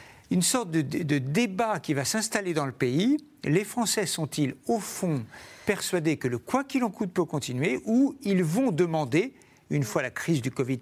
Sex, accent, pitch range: male, French, 130-185 Hz